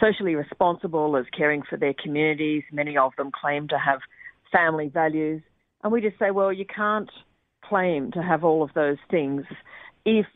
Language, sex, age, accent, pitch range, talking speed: English, female, 50-69, Australian, 150-195 Hz, 175 wpm